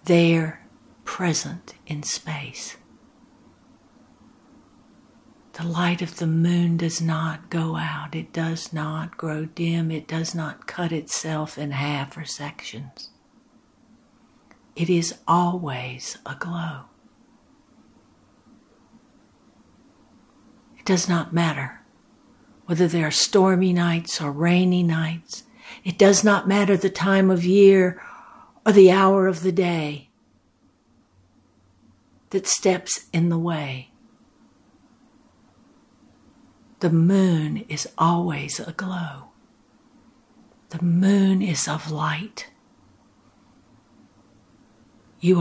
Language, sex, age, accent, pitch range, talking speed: English, female, 60-79, American, 160-235 Hz, 95 wpm